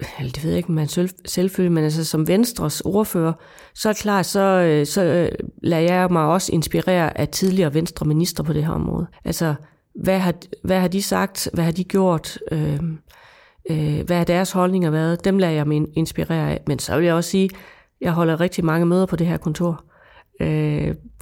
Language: Danish